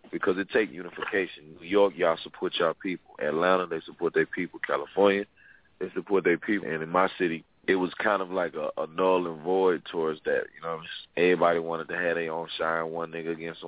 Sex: male